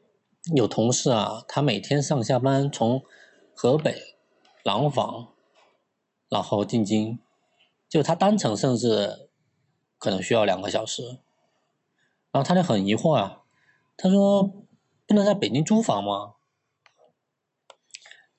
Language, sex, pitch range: Chinese, male, 110-170 Hz